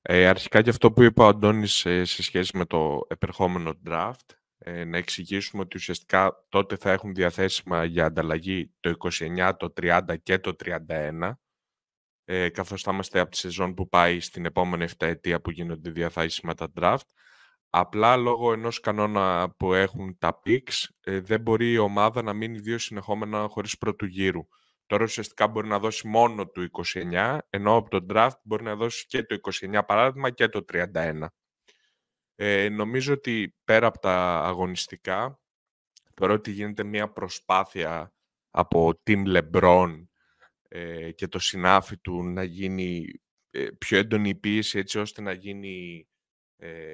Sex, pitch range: male, 85-105 Hz